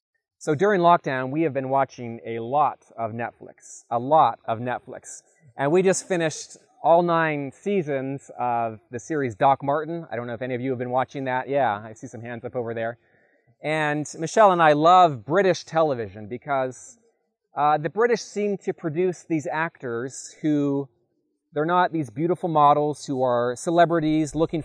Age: 30-49